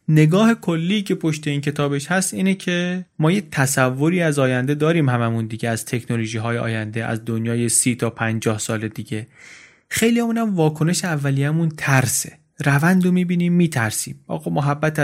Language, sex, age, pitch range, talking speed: Persian, male, 30-49, 125-165 Hz, 155 wpm